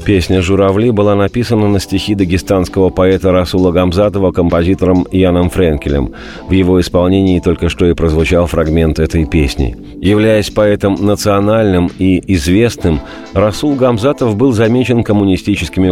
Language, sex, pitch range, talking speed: Russian, male, 90-105 Hz, 125 wpm